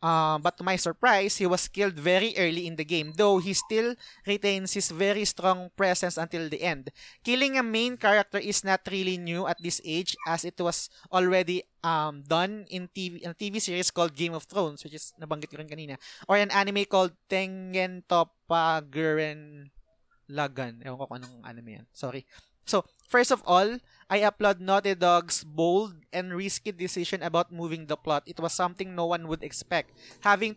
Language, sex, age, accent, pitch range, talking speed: Filipino, male, 20-39, native, 165-200 Hz, 185 wpm